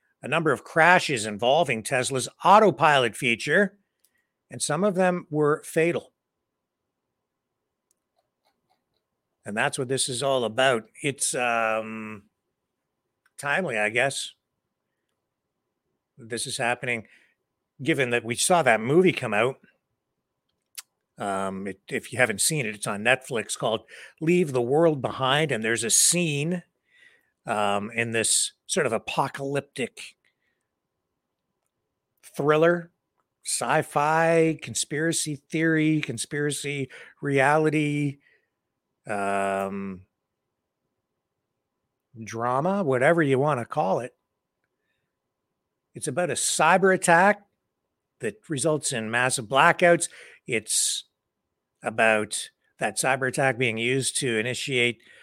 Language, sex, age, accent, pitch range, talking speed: English, male, 60-79, American, 115-160 Hz, 100 wpm